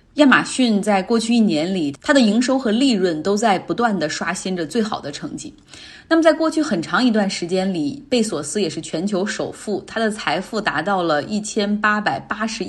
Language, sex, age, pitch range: Chinese, female, 20-39, 175-225 Hz